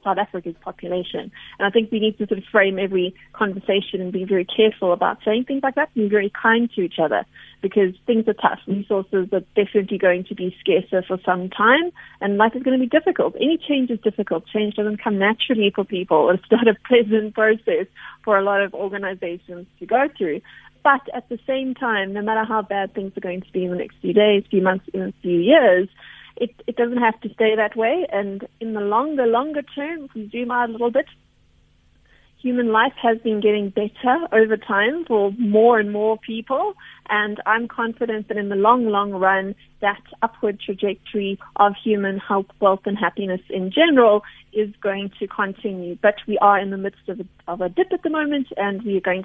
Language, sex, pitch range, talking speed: English, female, 195-230 Hz, 210 wpm